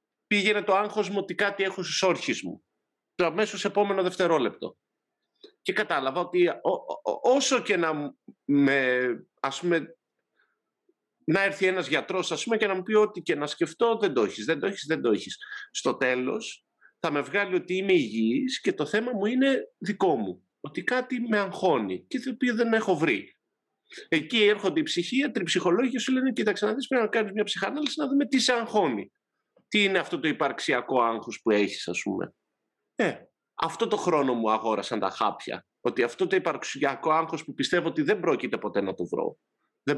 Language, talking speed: Greek, 195 wpm